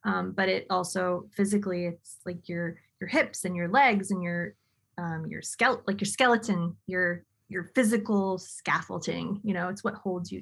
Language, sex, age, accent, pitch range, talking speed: English, female, 20-39, American, 180-215 Hz, 180 wpm